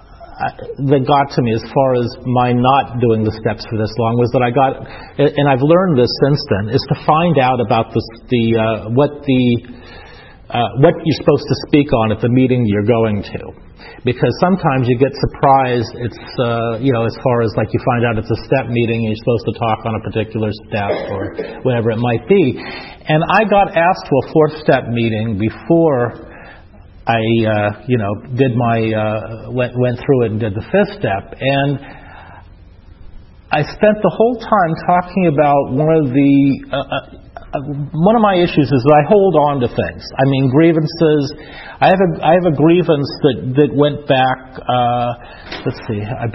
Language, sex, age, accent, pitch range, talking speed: English, male, 40-59, American, 115-150 Hz, 195 wpm